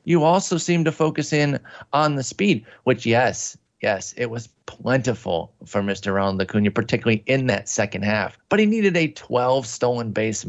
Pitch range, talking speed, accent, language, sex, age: 110-145 Hz, 175 wpm, American, English, male, 30-49